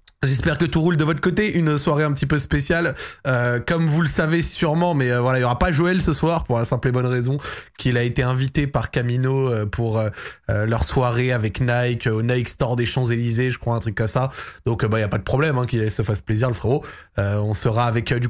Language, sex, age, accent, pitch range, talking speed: French, male, 20-39, French, 120-170 Hz, 255 wpm